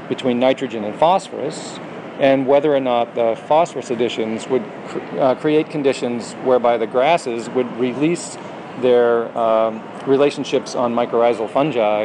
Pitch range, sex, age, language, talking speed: 115-135 Hz, male, 40-59, English, 130 wpm